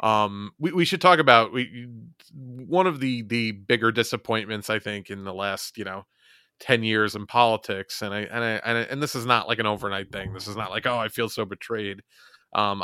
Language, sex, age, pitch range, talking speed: English, male, 30-49, 105-125 Hz, 225 wpm